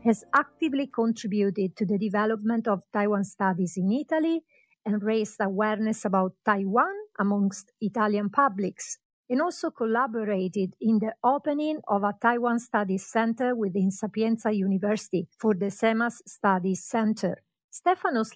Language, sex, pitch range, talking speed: English, female, 200-255 Hz, 125 wpm